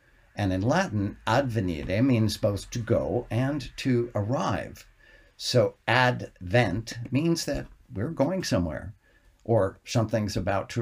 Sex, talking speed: male, 120 wpm